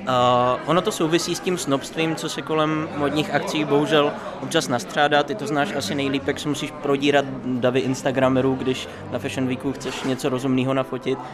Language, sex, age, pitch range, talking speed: Czech, male, 20-39, 125-145 Hz, 180 wpm